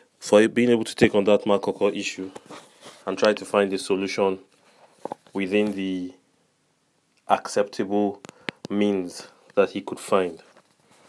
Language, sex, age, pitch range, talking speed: English, male, 30-49, 100-115 Hz, 125 wpm